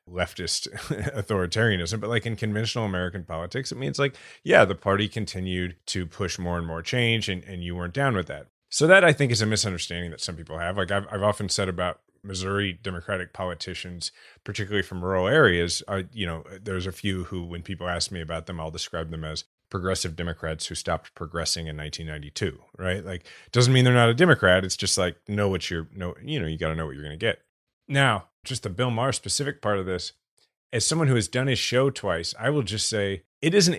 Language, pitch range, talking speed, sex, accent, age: English, 90-115 Hz, 220 wpm, male, American, 30-49